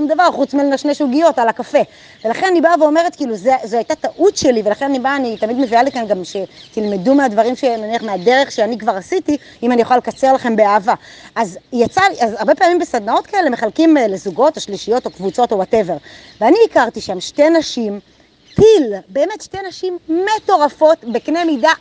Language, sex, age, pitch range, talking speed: Hebrew, female, 20-39, 240-330 Hz, 175 wpm